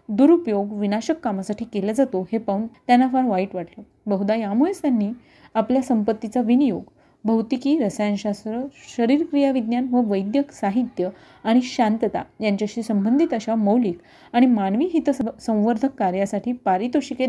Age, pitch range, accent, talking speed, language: 30-49, 205-260 Hz, native, 120 wpm, Marathi